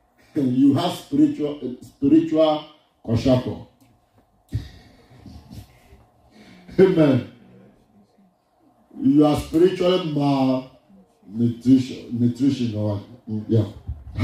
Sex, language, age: male, English, 50-69